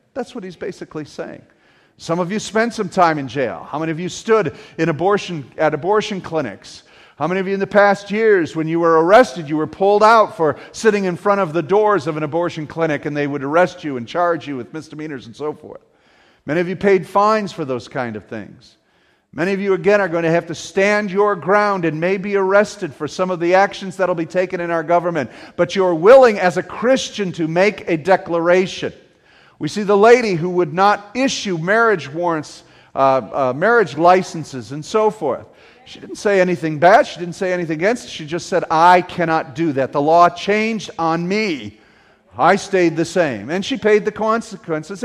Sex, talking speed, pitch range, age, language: male, 215 wpm, 160-200 Hz, 40-59, English